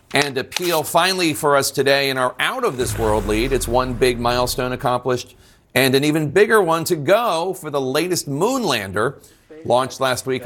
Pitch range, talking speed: 115-140 Hz, 190 wpm